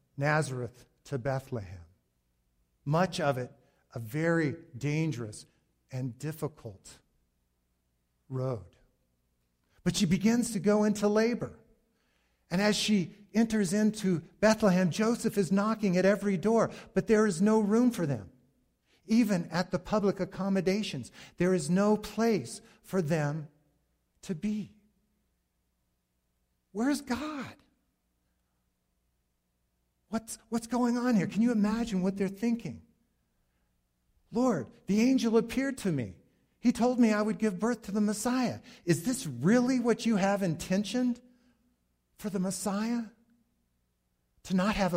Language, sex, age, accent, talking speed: English, male, 50-69, American, 125 wpm